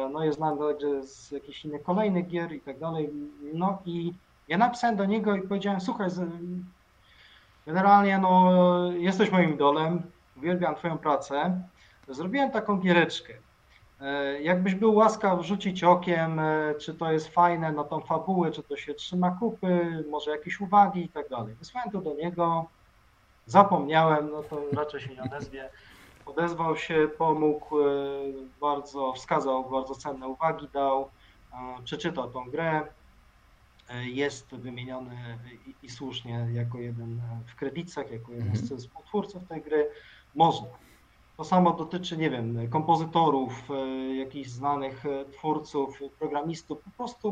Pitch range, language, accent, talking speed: 135-175 Hz, Polish, native, 135 wpm